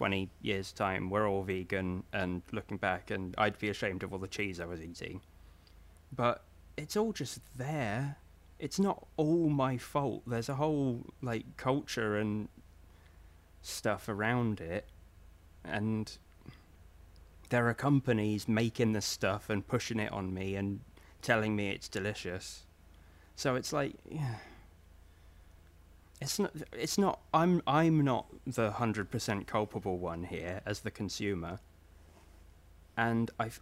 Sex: male